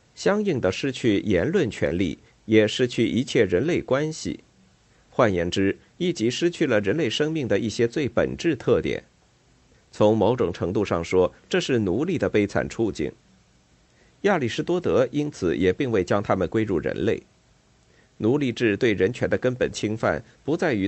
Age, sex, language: 50-69, male, Chinese